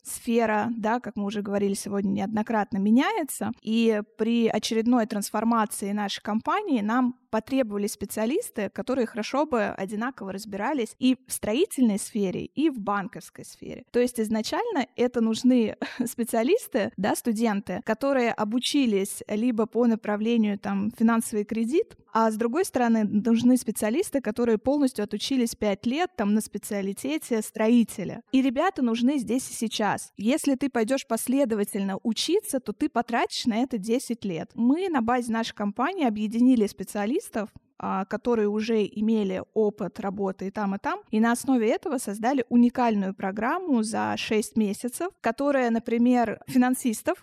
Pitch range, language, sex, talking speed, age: 210-255 Hz, Russian, female, 140 wpm, 20-39